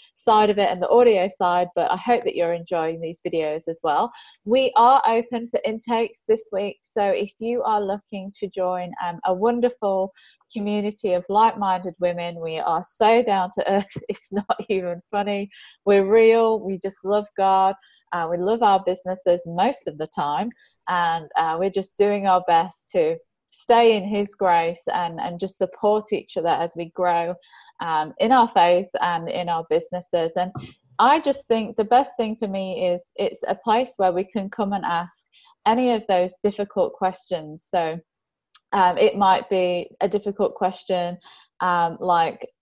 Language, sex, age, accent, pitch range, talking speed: English, female, 20-39, British, 175-215 Hz, 175 wpm